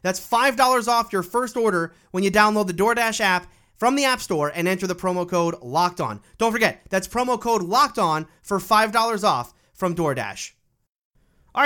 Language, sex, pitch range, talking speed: English, male, 155-200 Hz, 175 wpm